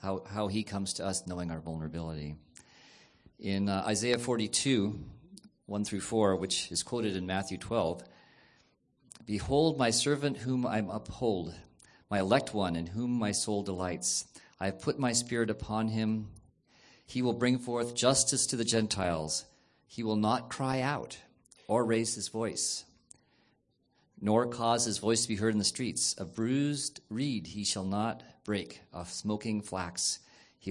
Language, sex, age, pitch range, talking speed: English, male, 40-59, 95-115 Hz, 160 wpm